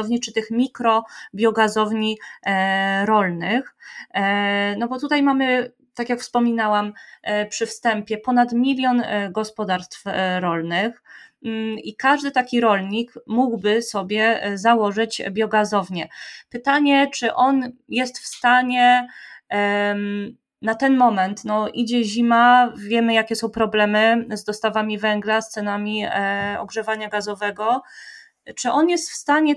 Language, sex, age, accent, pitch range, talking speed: Polish, female, 20-39, native, 215-245 Hz, 110 wpm